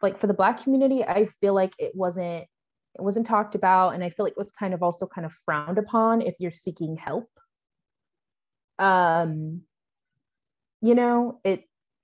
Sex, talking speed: female, 175 wpm